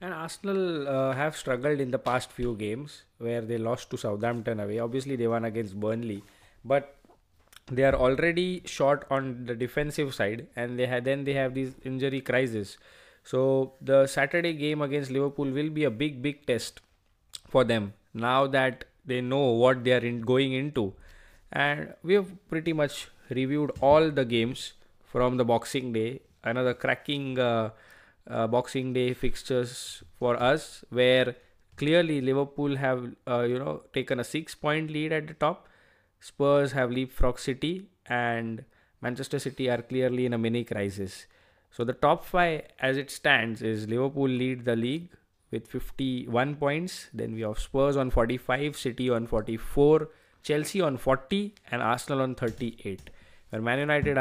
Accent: Indian